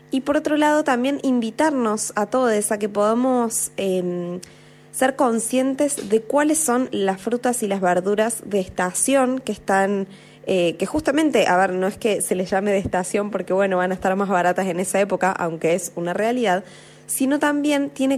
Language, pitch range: Spanish, 185-245 Hz